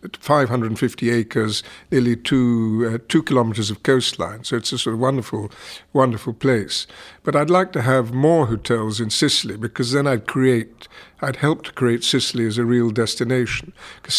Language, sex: English, male